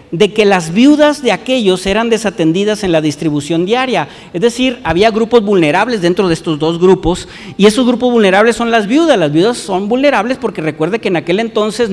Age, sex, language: 50-69, male, Spanish